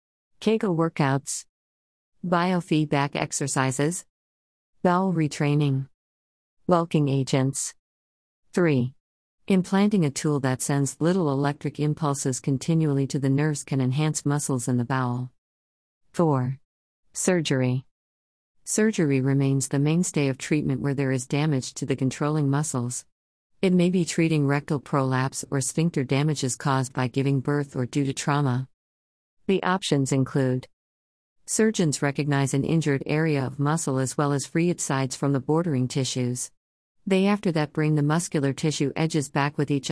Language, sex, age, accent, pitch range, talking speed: English, female, 50-69, American, 130-155 Hz, 135 wpm